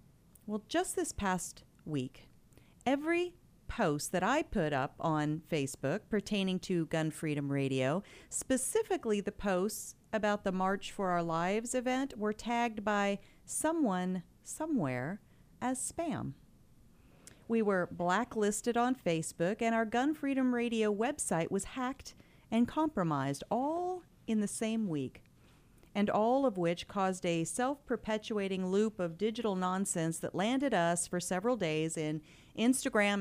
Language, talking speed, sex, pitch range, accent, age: English, 135 wpm, female, 175-240 Hz, American, 40-59